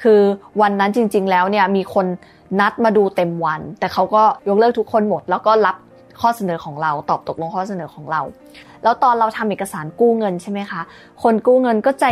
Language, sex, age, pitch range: Thai, female, 20-39, 180-220 Hz